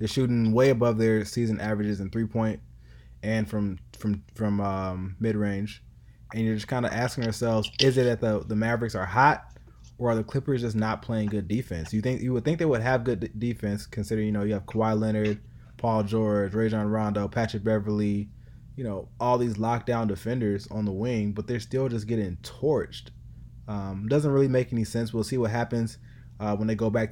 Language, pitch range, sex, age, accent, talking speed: English, 105-130 Hz, male, 20-39, American, 205 wpm